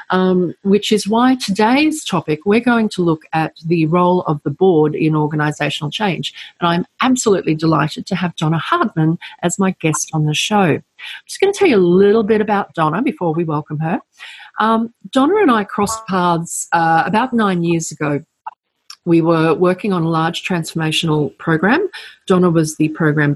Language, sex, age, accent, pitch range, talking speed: English, female, 40-59, Australian, 160-220 Hz, 180 wpm